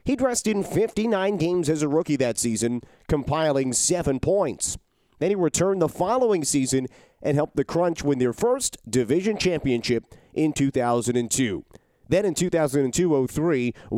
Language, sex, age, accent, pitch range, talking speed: English, male, 30-49, American, 125-165 Hz, 145 wpm